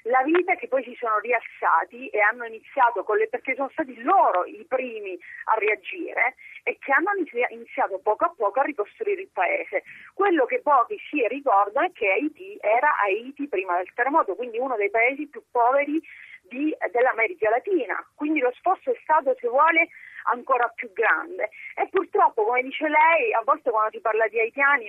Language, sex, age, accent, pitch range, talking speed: Italian, female, 30-49, native, 230-340 Hz, 175 wpm